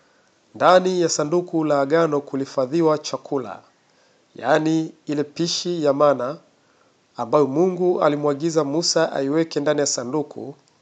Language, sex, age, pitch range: Swahili, male, 50-69, 140-165 Hz